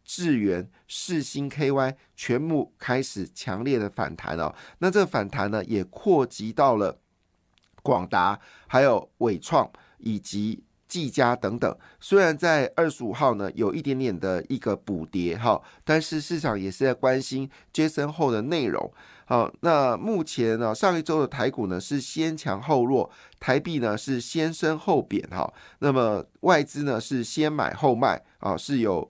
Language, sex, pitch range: Chinese, male, 110-150 Hz